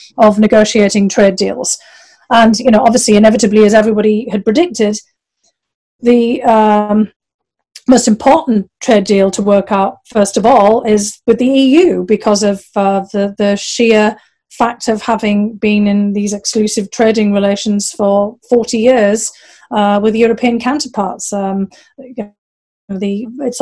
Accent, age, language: British, 30-49, English